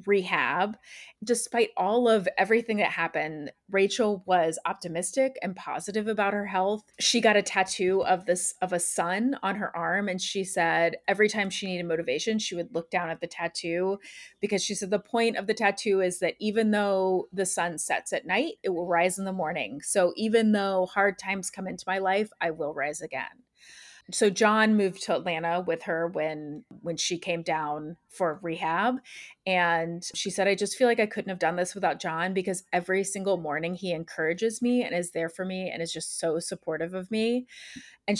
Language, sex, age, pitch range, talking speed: English, female, 30-49, 170-210 Hz, 200 wpm